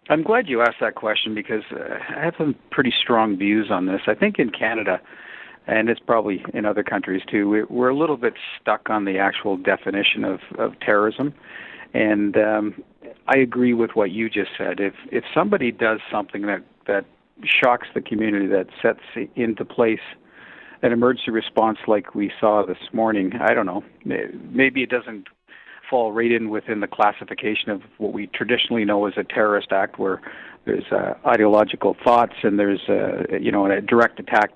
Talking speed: 180 wpm